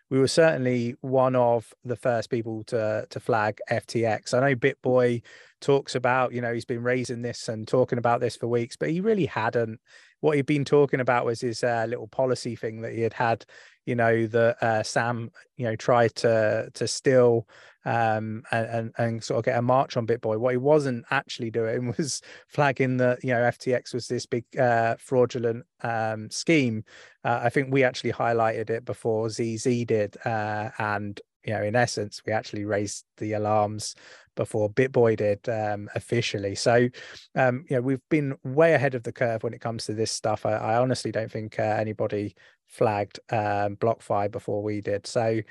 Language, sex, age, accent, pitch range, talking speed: English, male, 20-39, British, 115-135 Hz, 195 wpm